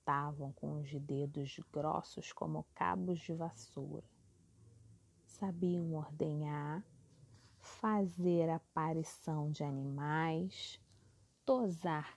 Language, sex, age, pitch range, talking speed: Portuguese, female, 30-49, 145-190 Hz, 80 wpm